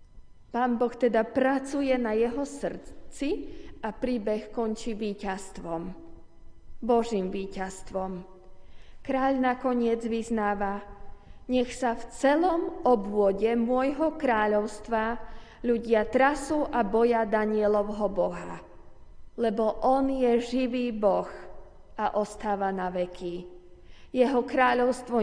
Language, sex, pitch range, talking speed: Slovak, female, 190-245 Hz, 95 wpm